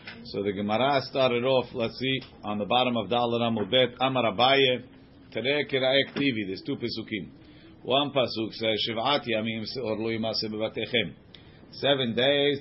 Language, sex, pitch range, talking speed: English, male, 110-135 Hz, 130 wpm